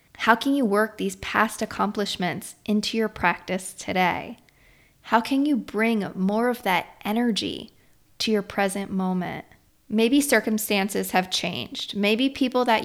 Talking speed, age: 140 wpm, 20-39